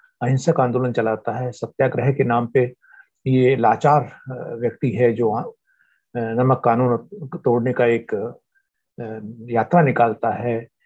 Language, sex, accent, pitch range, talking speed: Hindi, male, native, 120-165 Hz, 115 wpm